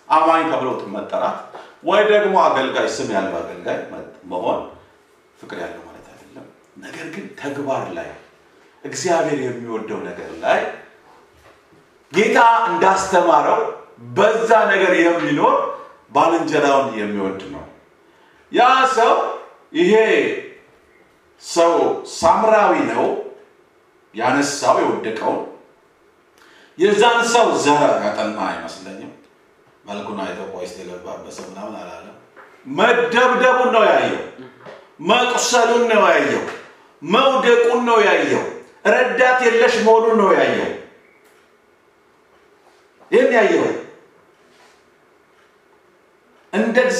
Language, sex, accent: English, male, Indian